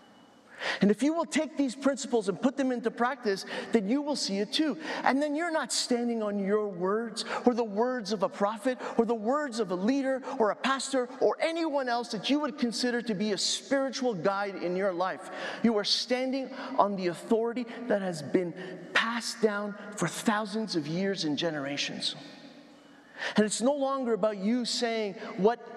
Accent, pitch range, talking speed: American, 200-270 Hz, 190 wpm